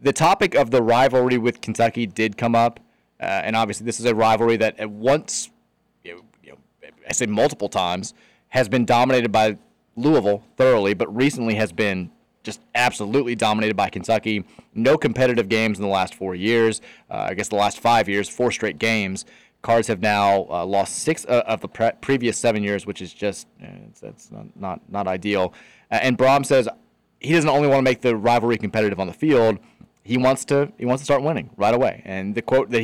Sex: male